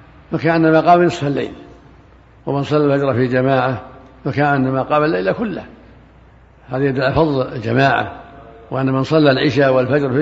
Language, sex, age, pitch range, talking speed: Arabic, male, 60-79, 130-155 Hz, 135 wpm